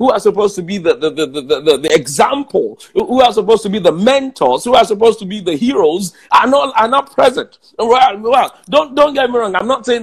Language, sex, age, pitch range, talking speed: English, male, 50-69, 195-275 Hz, 245 wpm